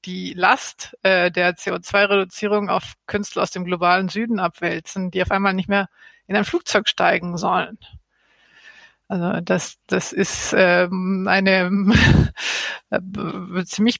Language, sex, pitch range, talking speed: German, female, 185-215 Hz, 130 wpm